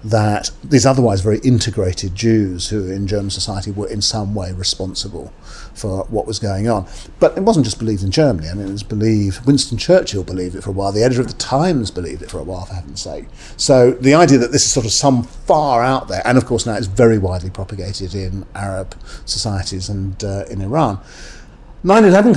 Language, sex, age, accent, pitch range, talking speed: English, male, 40-59, British, 100-130 Hz, 215 wpm